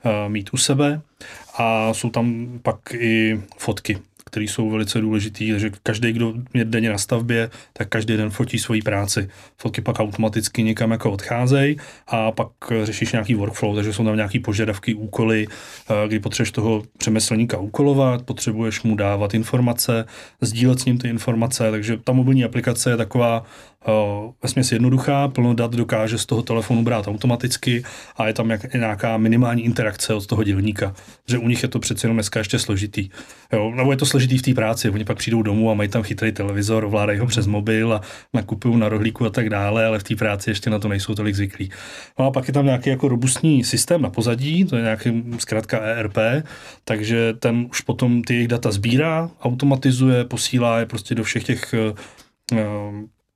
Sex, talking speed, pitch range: male, 185 wpm, 110-120 Hz